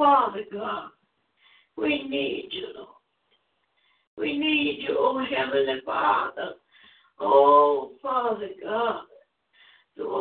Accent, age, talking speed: American, 60-79, 95 wpm